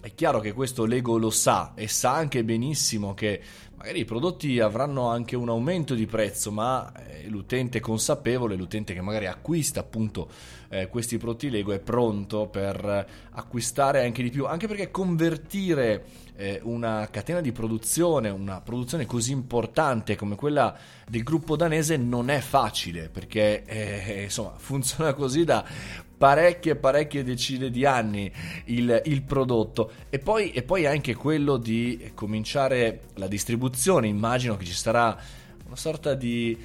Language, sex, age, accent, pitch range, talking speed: Italian, male, 20-39, native, 105-140 Hz, 150 wpm